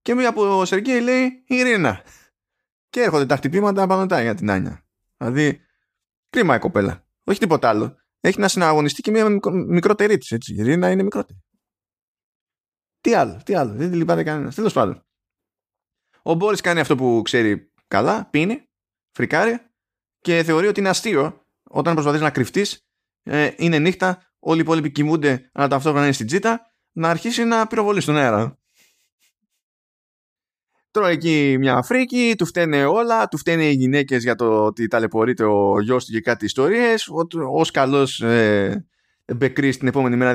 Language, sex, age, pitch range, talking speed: Greek, male, 20-39, 125-190 Hz, 155 wpm